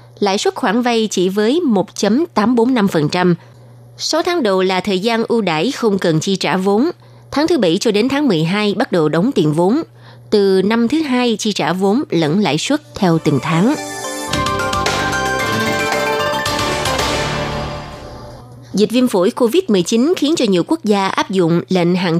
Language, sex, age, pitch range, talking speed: Vietnamese, female, 20-39, 165-230 Hz, 155 wpm